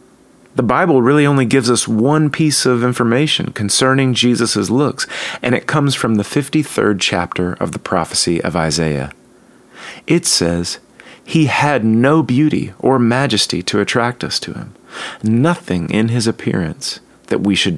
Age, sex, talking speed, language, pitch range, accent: 40-59, male, 150 wpm, English, 95-135 Hz, American